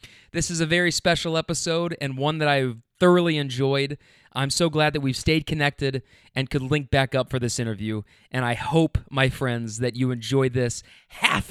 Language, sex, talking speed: English, male, 195 wpm